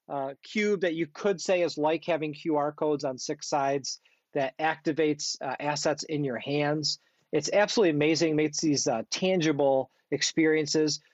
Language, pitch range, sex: English, 145-180 Hz, male